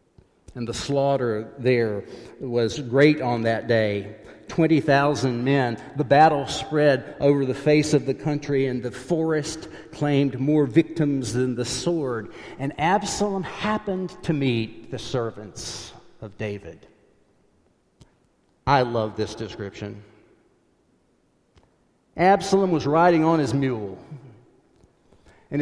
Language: English